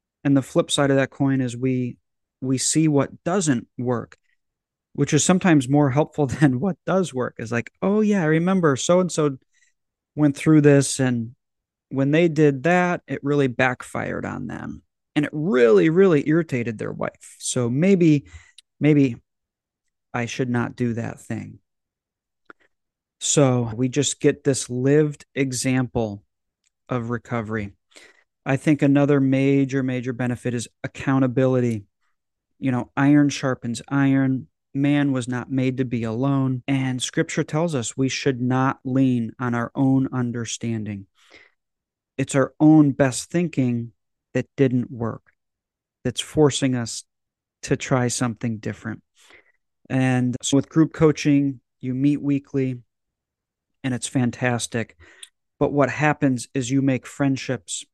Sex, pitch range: male, 125-145 Hz